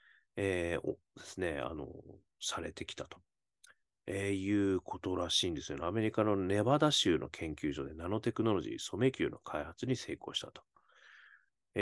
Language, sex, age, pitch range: Japanese, male, 40-59, 85-140 Hz